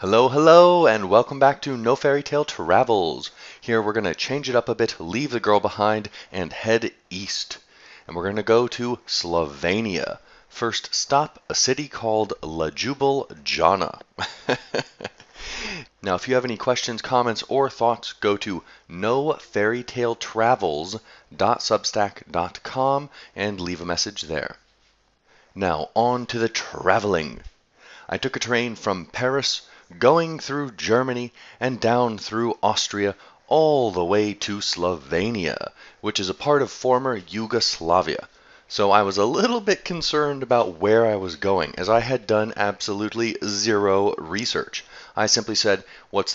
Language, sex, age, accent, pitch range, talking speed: English, male, 30-49, American, 100-130 Hz, 140 wpm